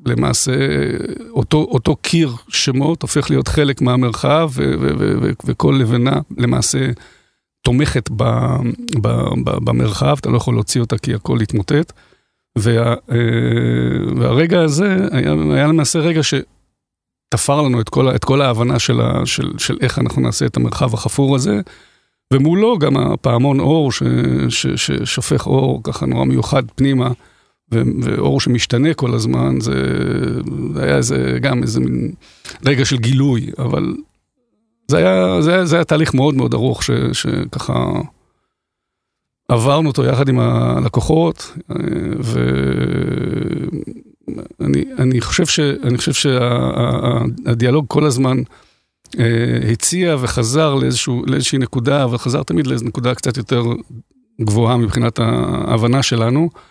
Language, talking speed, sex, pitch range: Hebrew, 130 wpm, male, 110-145 Hz